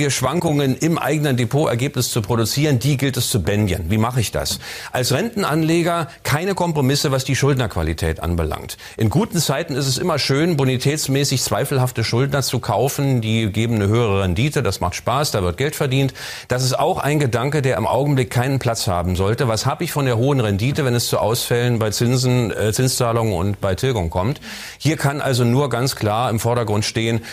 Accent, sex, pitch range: German, male, 115-150 Hz